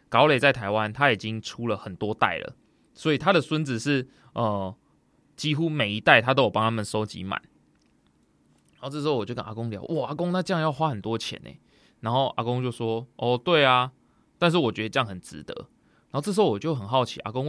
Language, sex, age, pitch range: Chinese, male, 20-39, 105-135 Hz